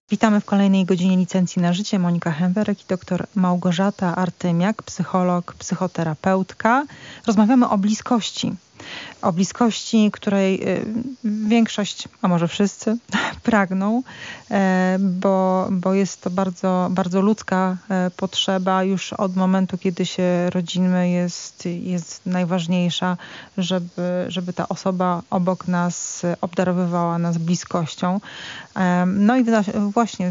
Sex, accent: female, native